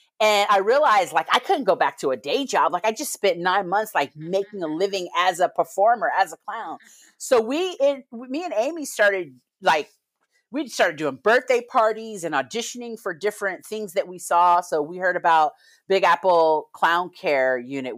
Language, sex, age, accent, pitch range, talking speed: English, female, 40-59, American, 145-195 Hz, 190 wpm